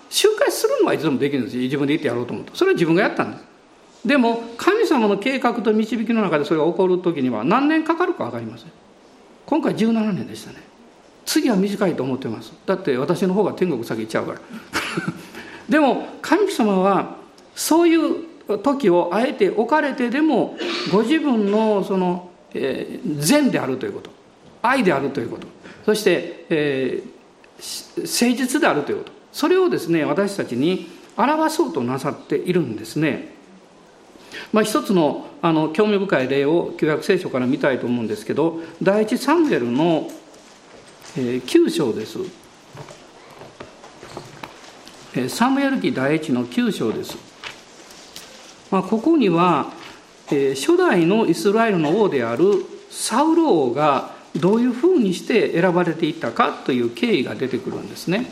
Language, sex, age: Japanese, male, 50-69